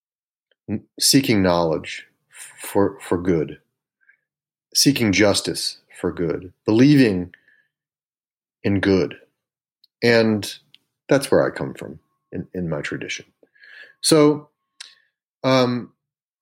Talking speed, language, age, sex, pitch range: 90 wpm, English, 40-59, male, 95-140 Hz